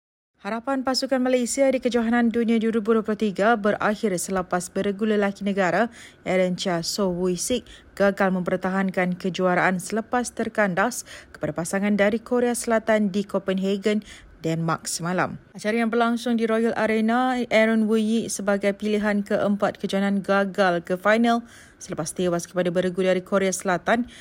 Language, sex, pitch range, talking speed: Malay, female, 185-230 Hz, 130 wpm